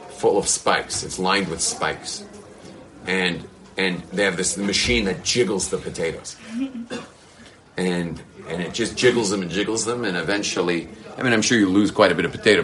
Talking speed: 185 wpm